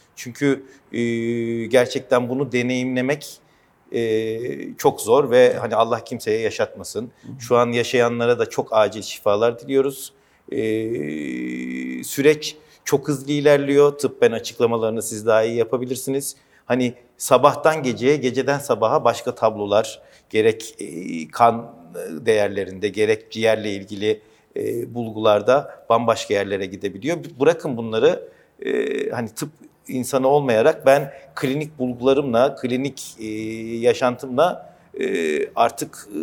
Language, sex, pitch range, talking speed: Turkish, male, 115-145 Hz, 100 wpm